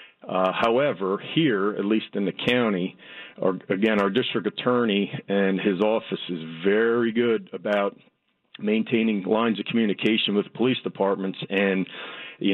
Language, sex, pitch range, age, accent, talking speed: English, male, 100-115 Hz, 50-69, American, 140 wpm